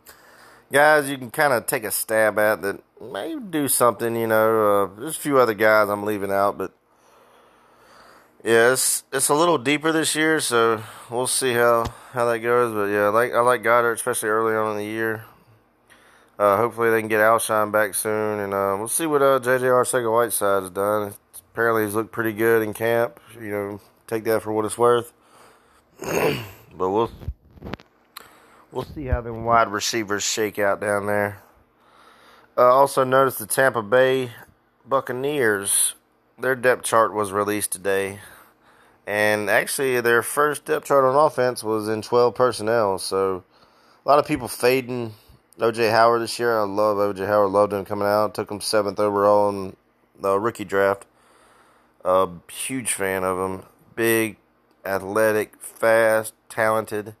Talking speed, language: 165 wpm, English